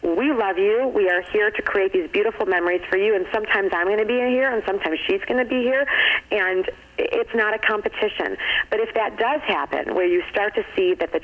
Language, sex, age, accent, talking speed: English, female, 40-59, American, 240 wpm